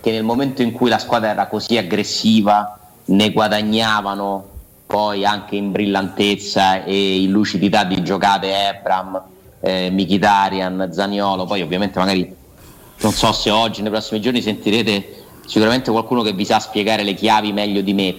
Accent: native